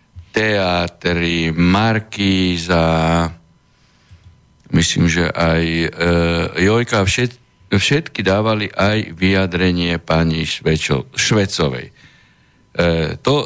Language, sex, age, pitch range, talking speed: Slovak, male, 50-69, 90-115 Hz, 60 wpm